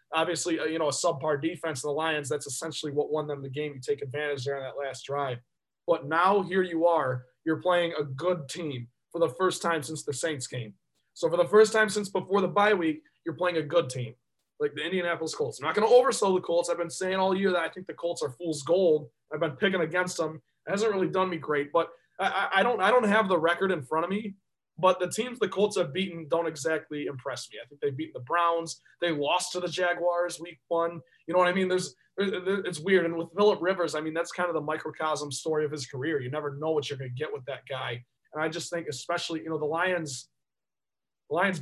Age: 20-39